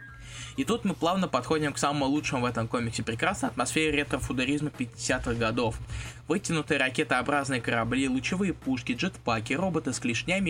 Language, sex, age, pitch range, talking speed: Russian, male, 20-39, 120-155 Hz, 150 wpm